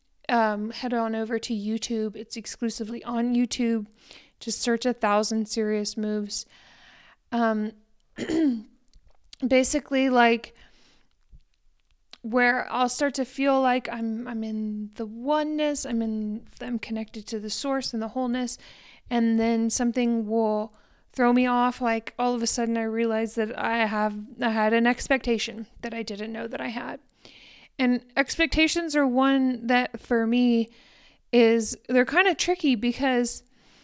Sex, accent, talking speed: female, American, 145 wpm